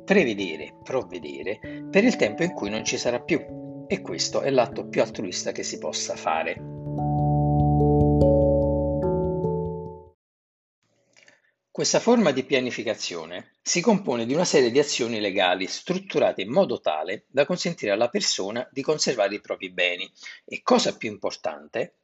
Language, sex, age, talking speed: Italian, male, 50-69, 135 wpm